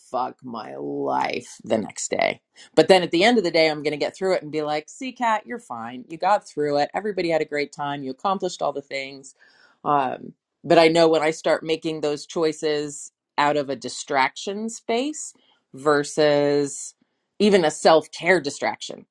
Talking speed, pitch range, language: 190 wpm, 135-165 Hz, English